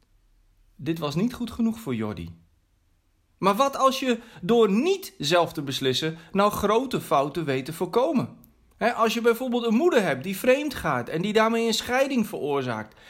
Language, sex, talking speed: Dutch, male, 175 wpm